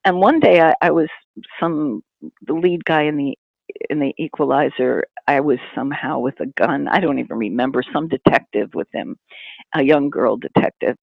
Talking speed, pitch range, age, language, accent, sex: 180 wpm, 145-180 Hz, 50-69, English, American, female